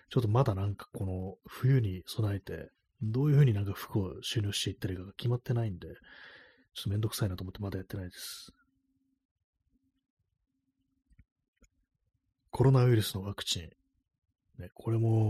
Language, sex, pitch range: Japanese, male, 95-125 Hz